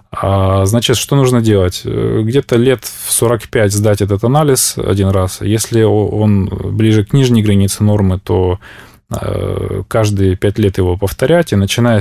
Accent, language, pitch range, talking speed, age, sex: native, Russian, 100-120 Hz, 140 wpm, 20-39, male